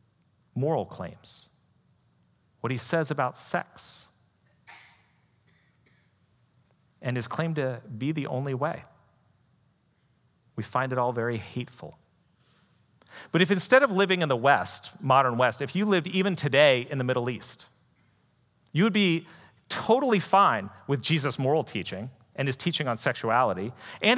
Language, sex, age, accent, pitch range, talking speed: English, male, 40-59, American, 125-165 Hz, 135 wpm